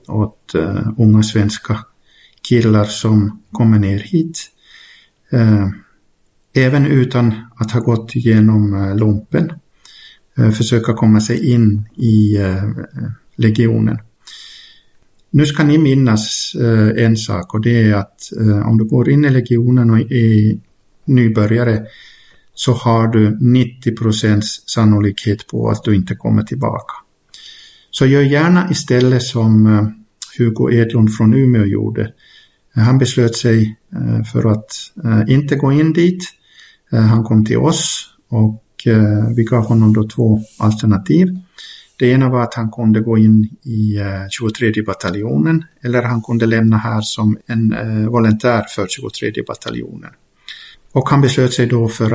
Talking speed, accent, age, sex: 135 wpm, Finnish, 50-69, male